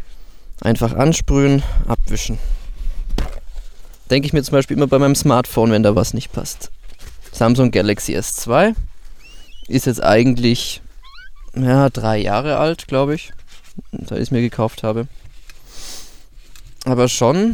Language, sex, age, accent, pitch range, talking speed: German, male, 20-39, German, 105-135 Hz, 125 wpm